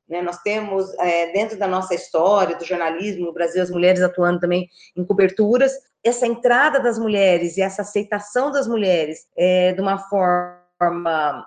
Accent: Brazilian